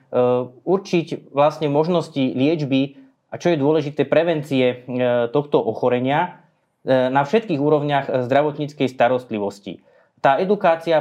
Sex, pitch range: male, 130-155 Hz